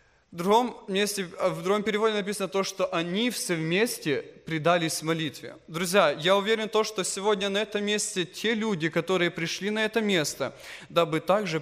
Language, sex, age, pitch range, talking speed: English, male, 20-39, 190-225 Hz, 170 wpm